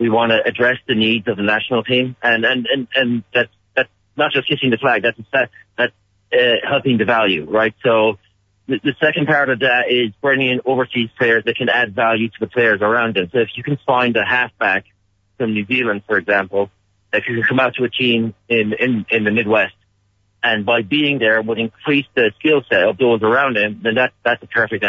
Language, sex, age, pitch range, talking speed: English, male, 40-59, 100-125 Hz, 225 wpm